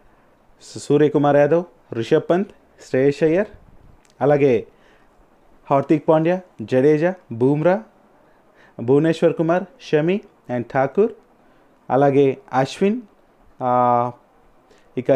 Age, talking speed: 30-49, 75 wpm